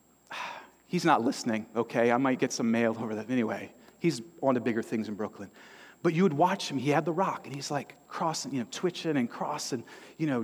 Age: 40-59